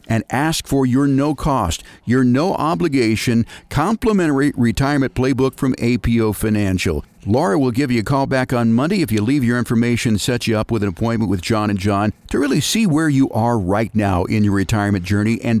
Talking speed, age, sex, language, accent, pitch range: 200 wpm, 50-69, male, English, American, 105-135 Hz